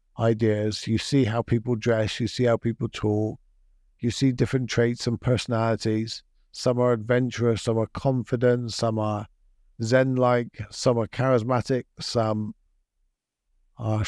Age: 50-69